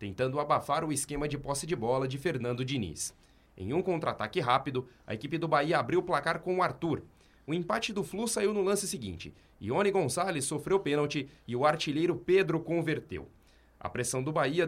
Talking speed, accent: 190 wpm, Brazilian